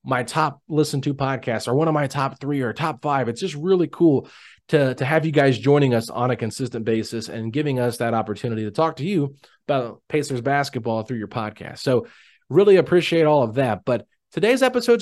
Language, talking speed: English, 210 wpm